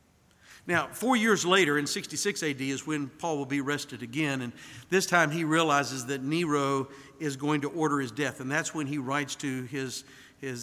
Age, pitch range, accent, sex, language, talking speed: 60-79, 135-165 Hz, American, male, English, 200 wpm